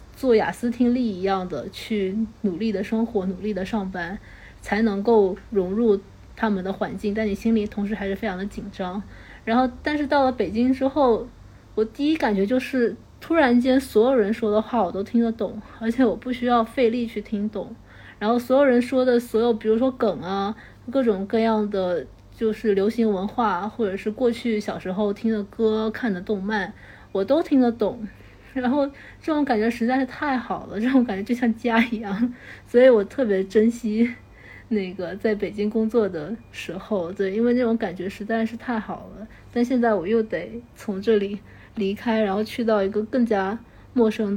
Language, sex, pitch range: Chinese, female, 195-235 Hz